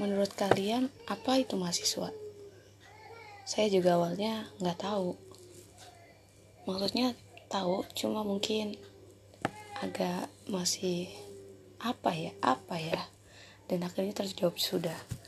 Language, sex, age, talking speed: Indonesian, female, 20-39, 95 wpm